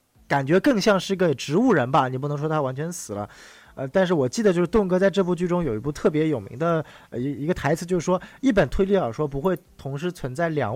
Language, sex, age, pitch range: Chinese, male, 20-39, 130-195 Hz